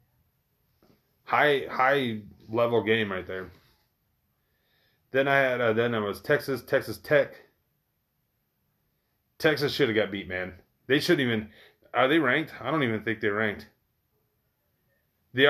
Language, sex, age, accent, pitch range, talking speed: English, male, 30-49, American, 100-130 Hz, 135 wpm